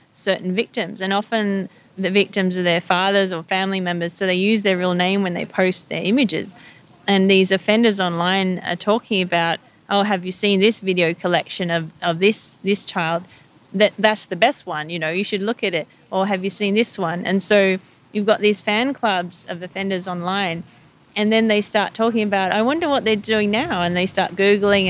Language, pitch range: English, 180-210 Hz